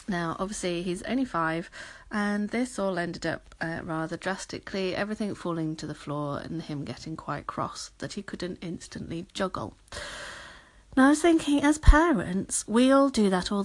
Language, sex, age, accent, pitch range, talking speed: English, female, 40-59, British, 170-235 Hz, 170 wpm